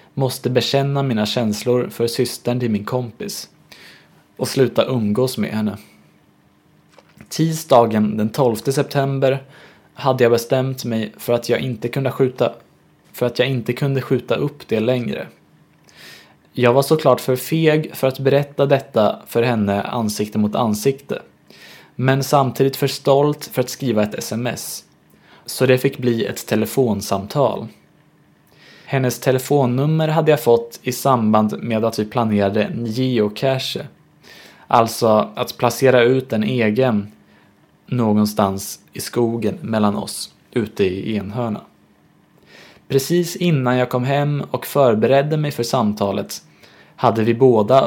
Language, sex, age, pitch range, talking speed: Swedish, male, 20-39, 115-135 Hz, 125 wpm